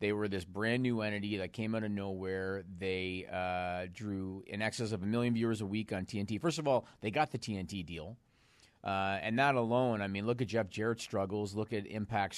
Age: 40-59